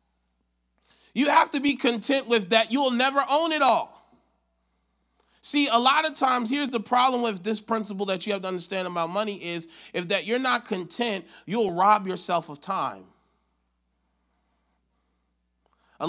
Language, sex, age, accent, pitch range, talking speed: English, male, 30-49, American, 175-275 Hz, 160 wpm